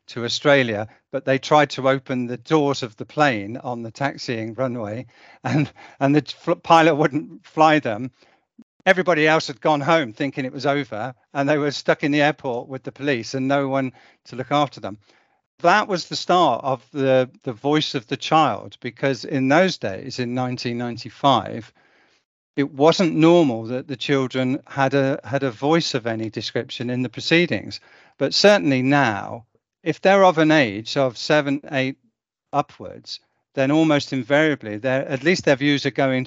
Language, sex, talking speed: English, male, 175 wpm